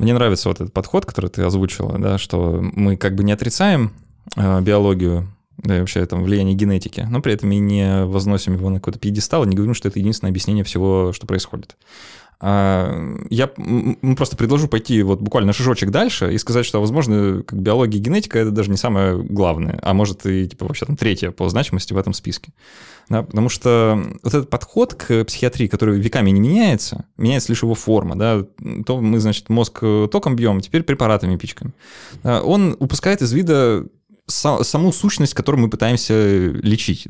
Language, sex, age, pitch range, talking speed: Russian, male, 20-39, 95-120 Hz, 175 wpm